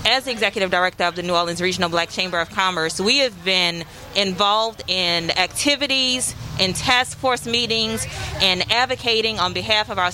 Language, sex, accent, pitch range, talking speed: English, female, American, 185-235 Hz, 165 wpm